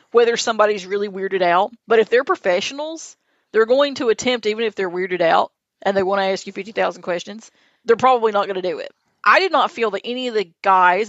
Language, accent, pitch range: English, American, 185-225 Hz